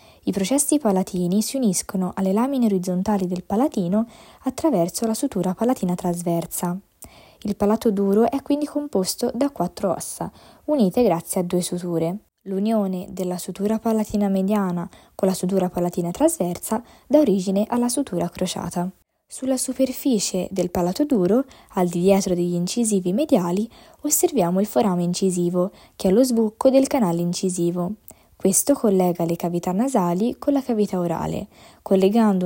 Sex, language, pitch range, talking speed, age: female, Italian, 180-230 Hz, 140 wpm, 20-39